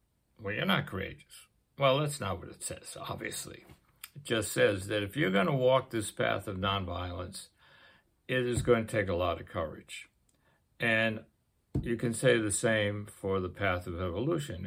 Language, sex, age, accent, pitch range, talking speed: English, male, 60-79, American, 95-120 Hz, 180 wpm